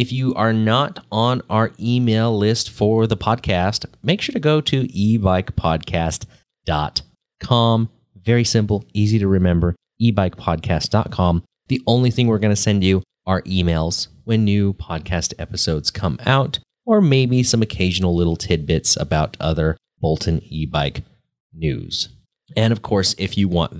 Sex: male